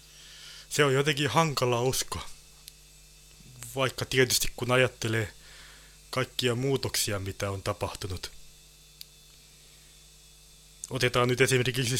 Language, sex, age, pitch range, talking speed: Finnish, male, 20-39, 115-150 Hz, 85 wpm